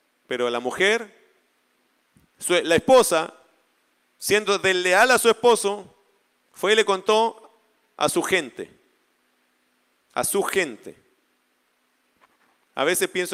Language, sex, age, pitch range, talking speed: Spanish, male, 40-59, 155-245 Hz, 105 wpm